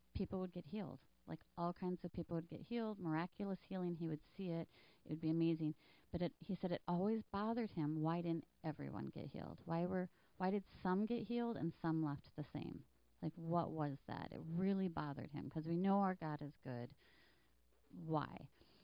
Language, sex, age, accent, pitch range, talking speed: English, female, 30-49, American, 155-195 Hz, 200 wpm